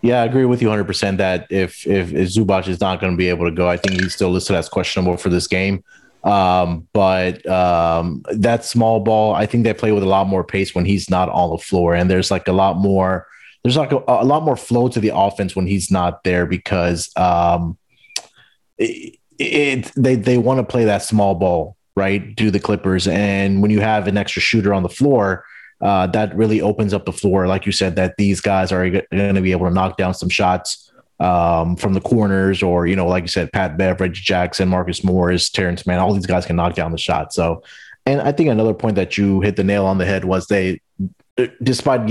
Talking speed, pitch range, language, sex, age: 230 wpm, 90-110 Hz, English, male, 30-49